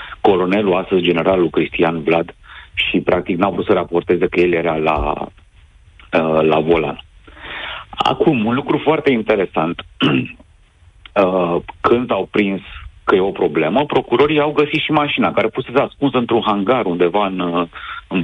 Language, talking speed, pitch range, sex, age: Romanian, 140 wpm, 85-115 Hz, male, 50-69